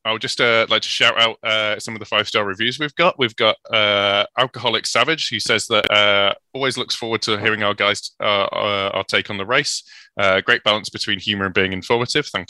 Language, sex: English, male